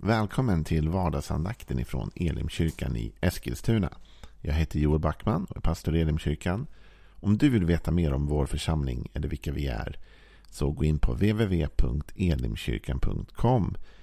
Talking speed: 140 wpm